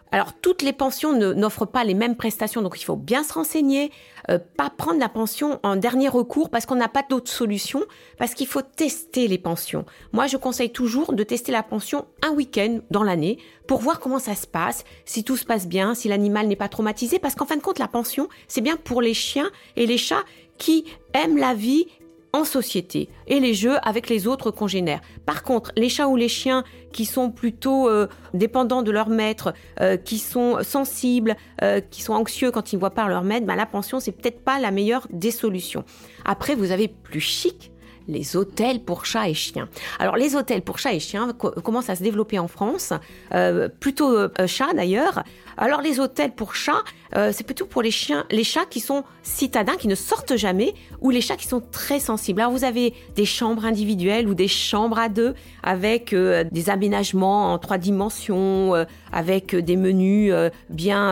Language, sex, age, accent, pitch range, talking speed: French, female, 40-59, French, 200-260 Hz, 210 wpm